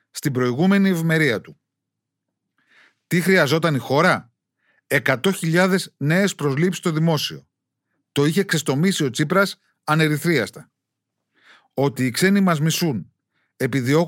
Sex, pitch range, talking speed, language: male, 140-185 Hz, 110 wpm, Greek